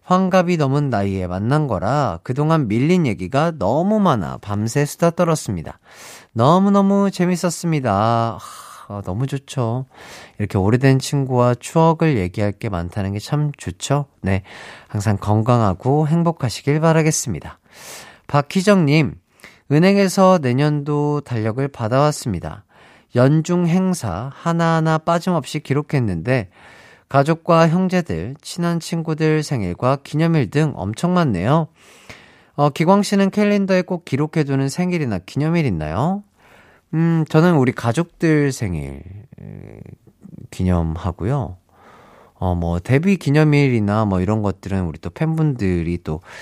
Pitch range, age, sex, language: 100-165 Hz, 40-59, male, Korean